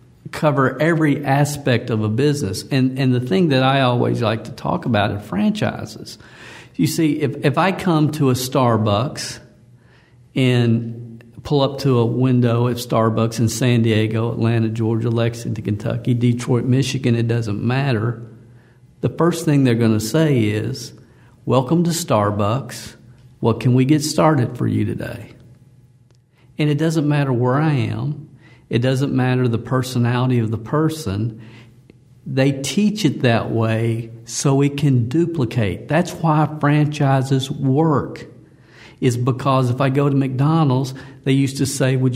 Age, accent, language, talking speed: 50-69, American, English, 150 wpm